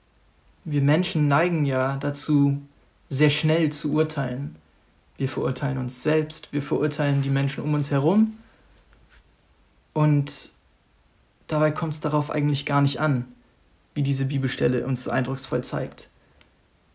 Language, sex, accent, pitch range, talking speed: German, male, German, 130-155 Hz, 125 wpm